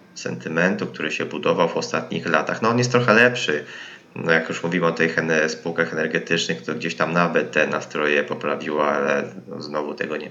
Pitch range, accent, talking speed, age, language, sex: 80-100 Hz, native, 185 wpm, 20-39, Polish, male